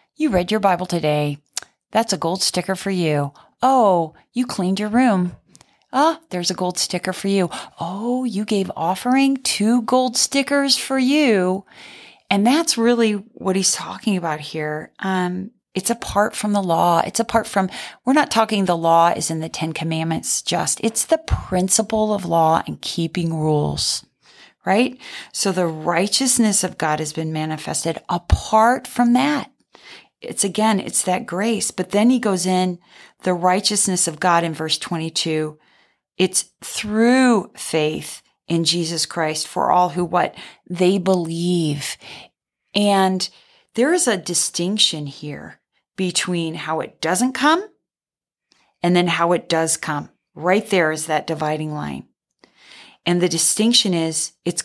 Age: 30-49